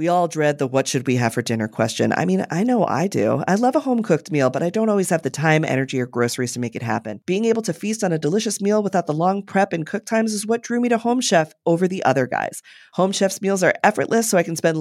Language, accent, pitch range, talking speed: English, American, 150-200 Hz, 290 wpm